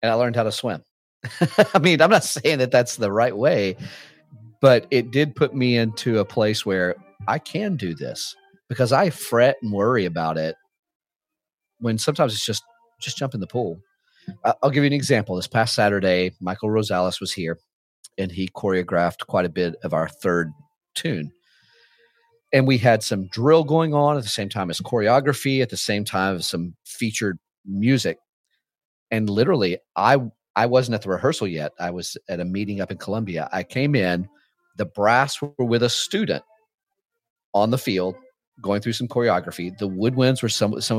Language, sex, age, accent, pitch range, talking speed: English, male, 40-59, American, 100-135 Hz, 185 wpm